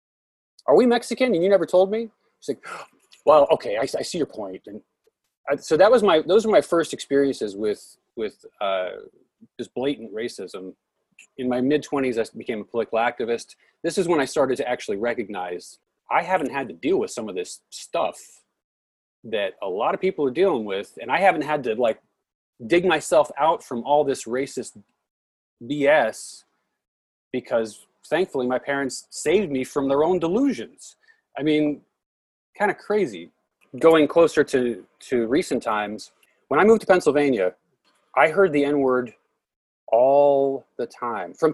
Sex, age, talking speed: male, 30-49, 170 wpm